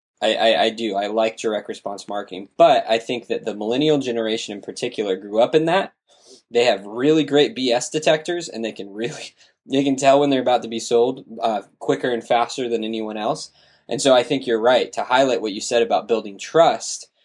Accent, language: American, English